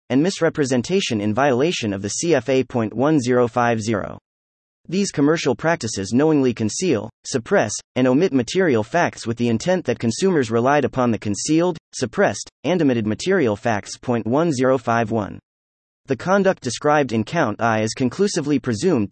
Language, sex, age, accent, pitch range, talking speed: English, male, 30-49, American, 110-155 Hz, 130 wpm